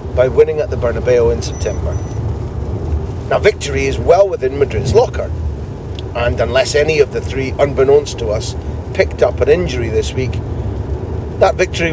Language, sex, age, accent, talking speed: English, male, 40-59, British, 155 wpm